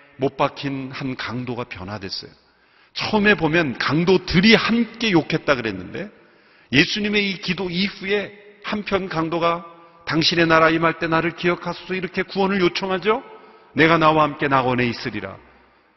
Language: Korean